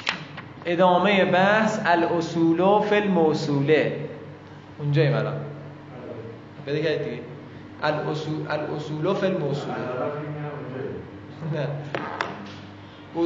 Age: 20-39